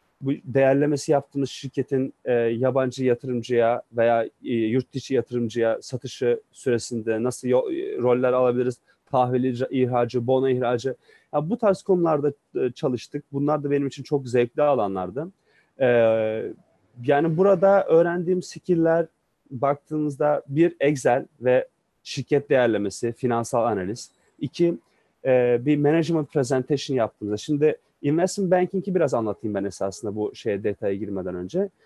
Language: Turkish